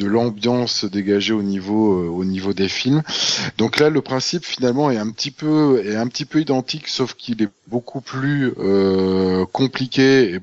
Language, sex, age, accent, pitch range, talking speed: French, male, 20-39, French, 110-135 Hz, 185 wpm